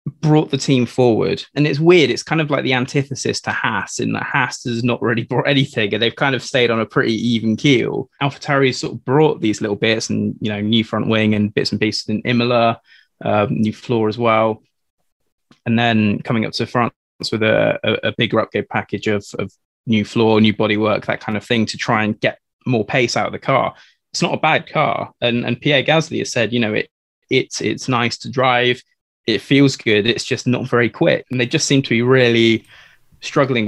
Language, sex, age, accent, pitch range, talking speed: English, male, 20-39, British, 110-130 Hz, 225 wpm